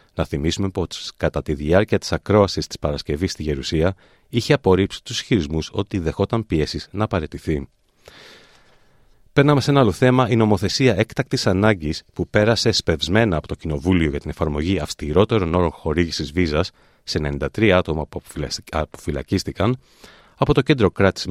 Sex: male